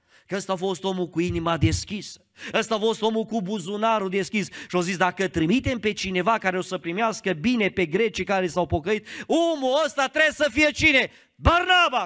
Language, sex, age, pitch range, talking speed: Romanian, male, 30-49, 190-295 Hz, 195 wpm